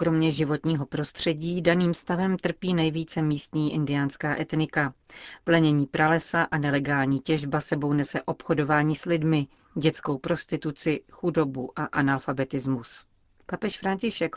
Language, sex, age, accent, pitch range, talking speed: Czech, female, 40-59, native, 150-170 Hz, 115 wpm